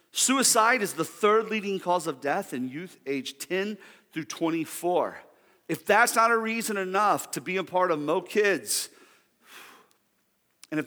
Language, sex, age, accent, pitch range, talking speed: English, male, 40-59, American, 150-215 Hz, 160 wpm